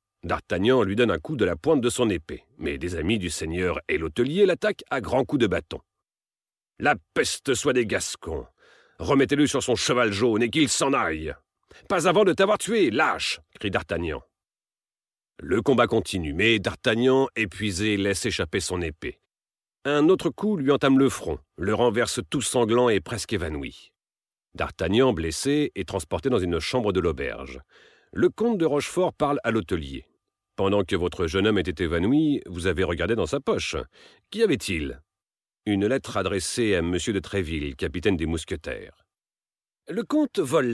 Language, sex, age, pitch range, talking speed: Slovak, male, 40-59, 95-145 Hz, 170 wpm